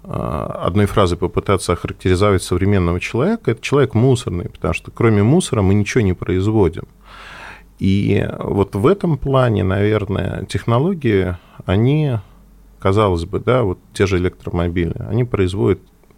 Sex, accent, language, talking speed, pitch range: male, native, Russian, 125 wpm, 95-120 Hz